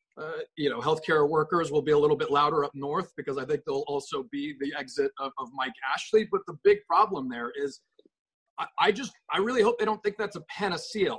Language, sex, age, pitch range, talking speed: English, male, 30-49, 150-245 Hz, 235 wpm